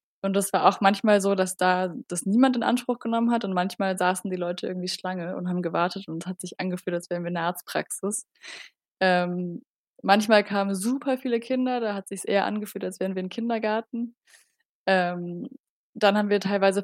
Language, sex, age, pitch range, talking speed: German, female, 20-39, 185-225 Hz, 200 wpm